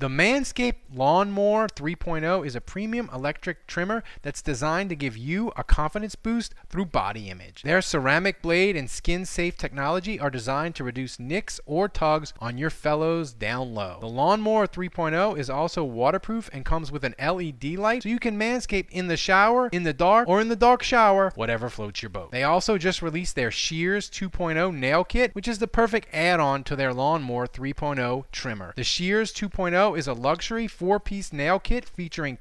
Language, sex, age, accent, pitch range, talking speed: English, male, 30-49, American, 145-205 Hz, 185 wpm